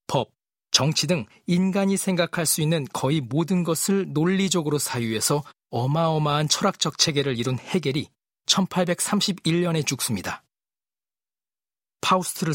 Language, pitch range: Korean, 135-175 Hz